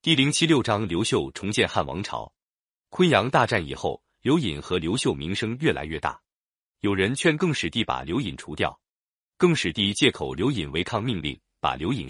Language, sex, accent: Chinese, male, native